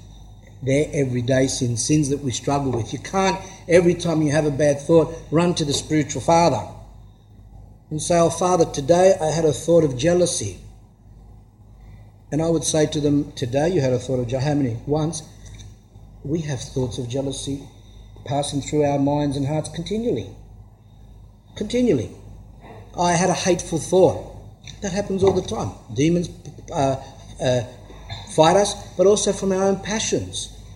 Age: 50-69